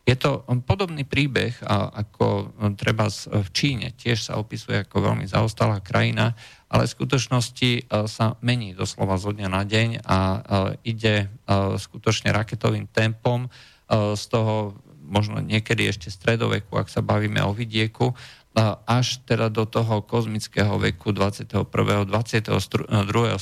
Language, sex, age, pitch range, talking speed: Slovak, male, 40-59, 100-120 Hz, 130 wpm